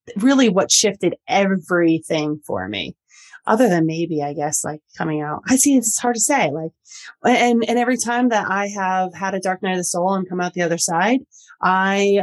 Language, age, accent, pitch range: English, 30-49, American, 170-220 Hz